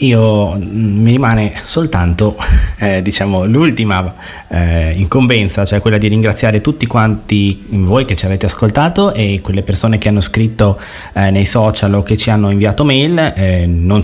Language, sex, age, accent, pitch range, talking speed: Italian, male, 20-39, native, 95-120 Hz, 160 wpm